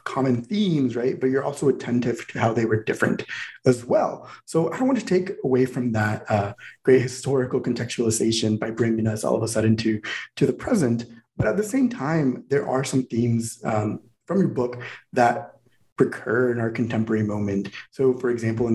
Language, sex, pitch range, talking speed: English, male, 110-130 Hz, 190 wpm